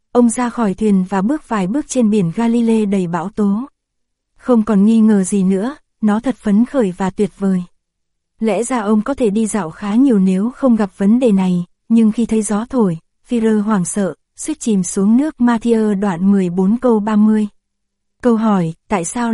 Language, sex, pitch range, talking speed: Vietnamese, female, 200-235 Hz, 195 wpm